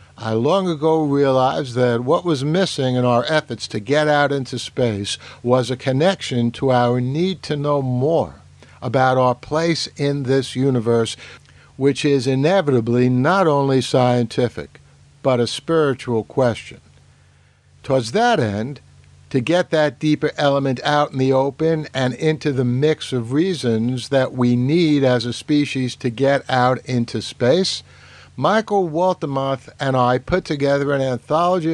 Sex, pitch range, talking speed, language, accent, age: male, 120-155 Hz, 145 wpm, English, American, 60-79